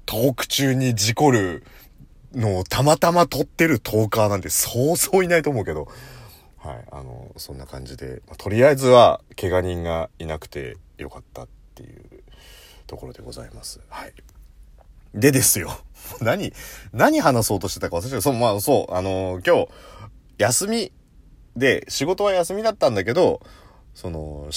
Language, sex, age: Japanese, male, 40-59